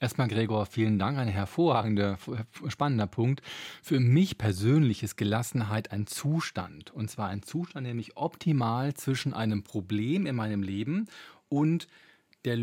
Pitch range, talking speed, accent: 110-145 Hz, 145 wpm, German